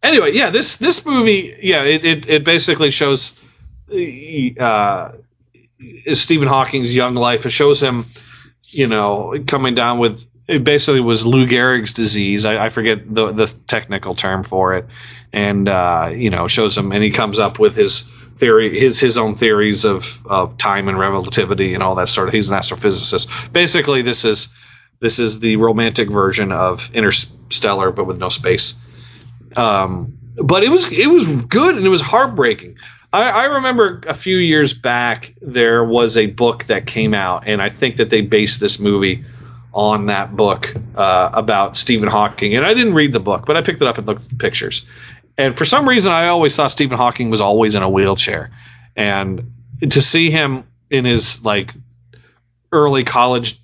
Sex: male